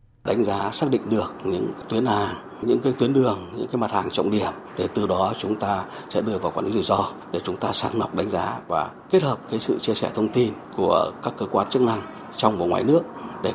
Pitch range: 125-165 Hz